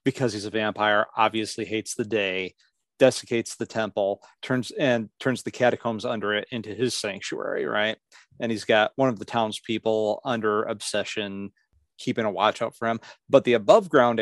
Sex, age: male, 30-49